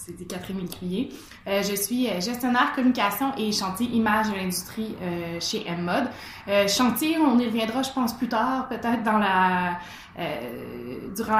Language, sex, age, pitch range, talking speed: French, female, 20-39, 180-225 Hz, 160 wpm